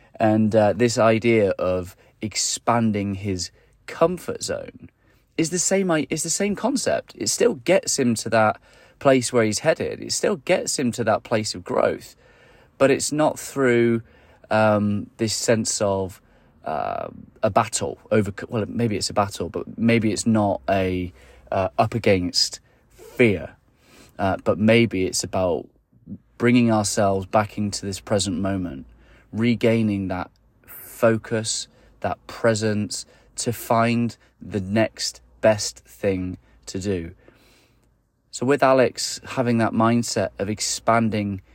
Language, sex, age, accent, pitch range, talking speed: English, male, 30-49, British, 100-125 Hz, 135 wpm